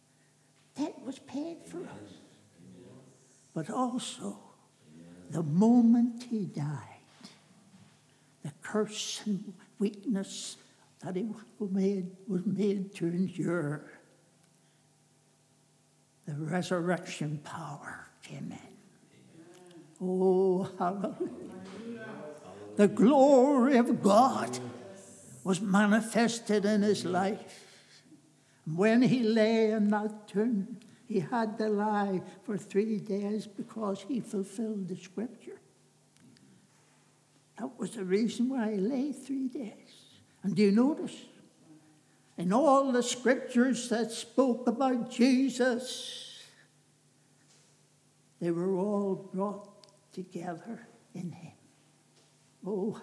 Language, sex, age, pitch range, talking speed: English, male, 60-79, 175-230 Hz, 95 wpm